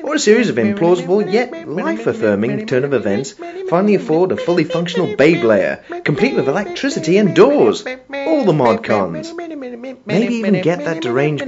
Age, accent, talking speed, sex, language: 30-49, British, 160 wpm, male, English